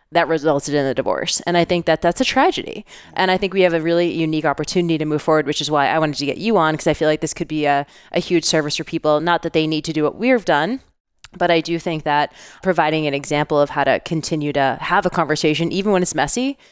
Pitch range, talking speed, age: 155-185 Hz, 270 wpm, 20-39